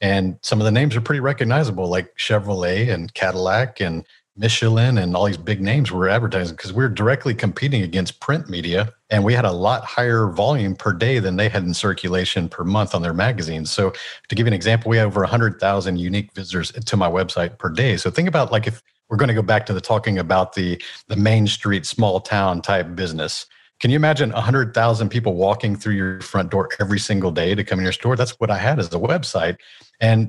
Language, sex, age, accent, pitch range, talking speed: English, male, 50-69, American, 95-120 Hz, 220 wpm